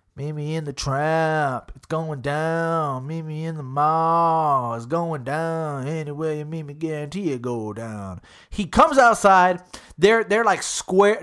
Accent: American